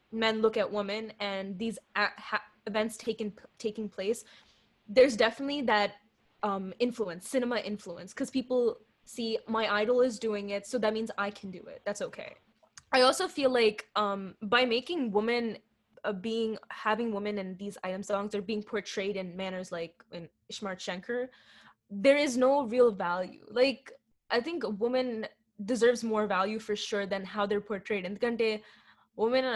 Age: 10-29